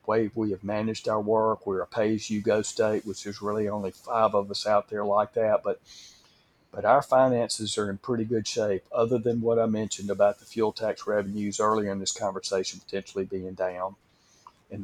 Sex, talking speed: male, 195 wpm